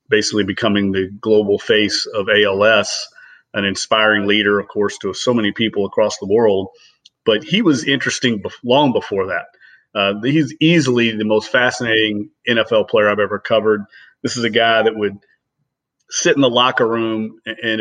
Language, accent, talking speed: English, American, 165 wpm